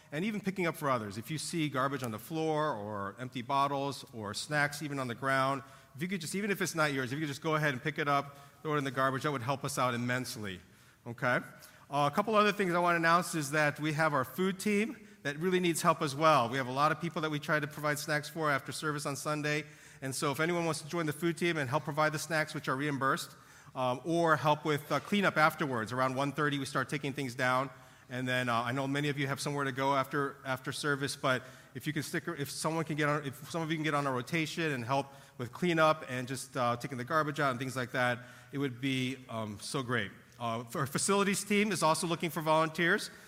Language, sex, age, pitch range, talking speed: English, male, 40-59, 130-155 Hz, 260 wpm